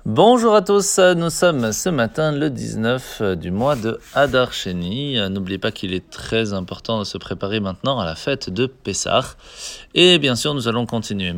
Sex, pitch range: male, 100-145 Hz